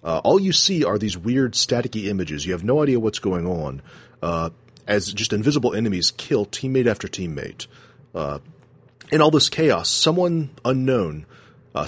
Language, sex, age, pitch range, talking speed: English, male, 30-49, 100-140 Hz, 165 wpm